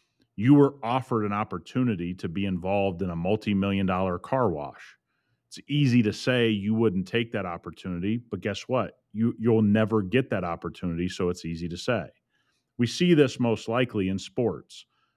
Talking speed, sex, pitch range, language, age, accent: 170 wpm, male, 110-150 Hz, English, 30-49, American